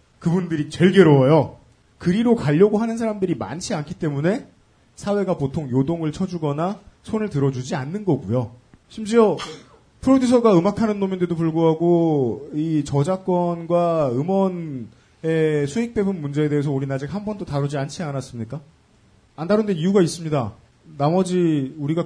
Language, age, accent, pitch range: Korean, 30-49, native, 135-195 Hz